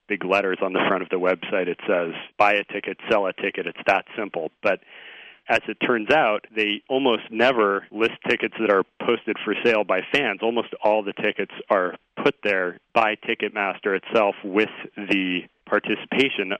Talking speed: 175 wpm